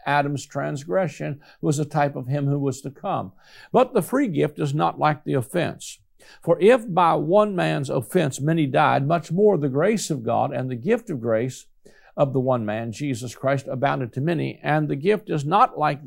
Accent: American